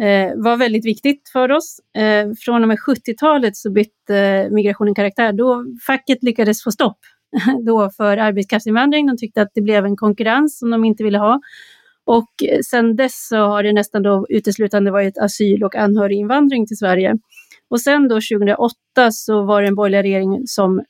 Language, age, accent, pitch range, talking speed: Swedish, 30-49, native, 205-240 Hz, 170 wpm